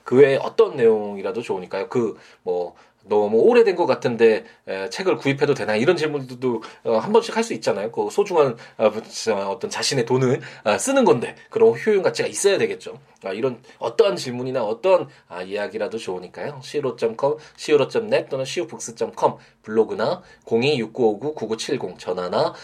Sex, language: male, Korean